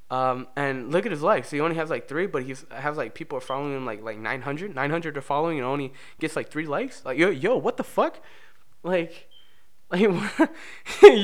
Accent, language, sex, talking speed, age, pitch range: American, English, male, 225 wpm, 20-39, 120-170 Hz